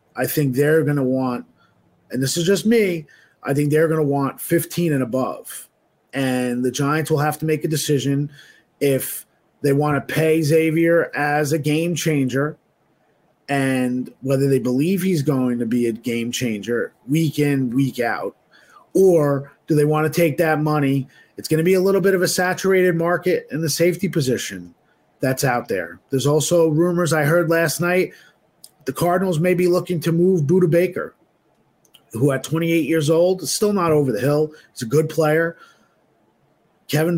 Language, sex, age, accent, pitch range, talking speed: English, male, 30-49, American, 140-175 Hz, 180 wpm